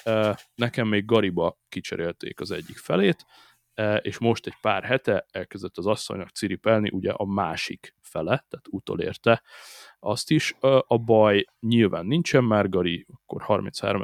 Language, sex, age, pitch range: Hungarian, male, 30-49, 95-115 Hz